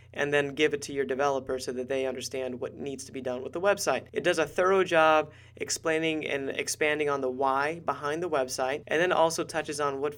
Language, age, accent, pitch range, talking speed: English, 30-49, American, 130-155 Hz, 230 wpm